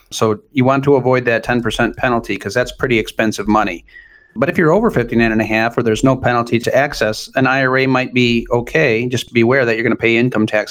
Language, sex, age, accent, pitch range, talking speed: English, male, 40-59, American, 110-125 Hz, 235 wpm